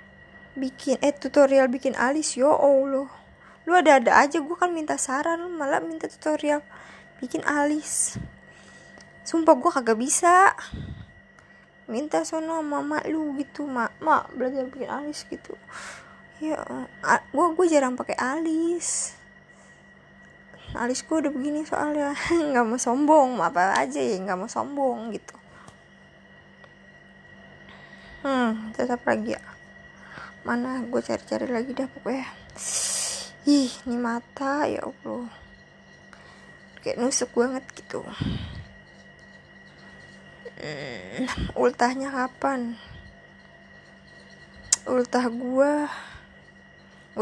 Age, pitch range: 20-39, 240-300 Hz